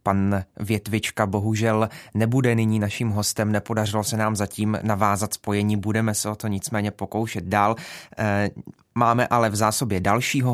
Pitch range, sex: 100-115 Hz, male